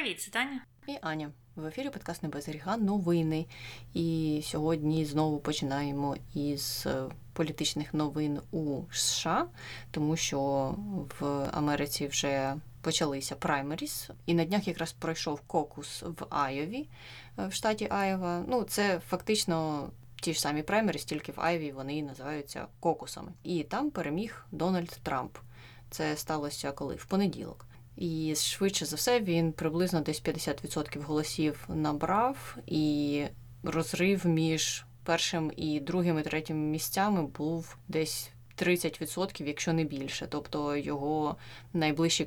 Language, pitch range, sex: Ukrainian, 145-170 Hz, female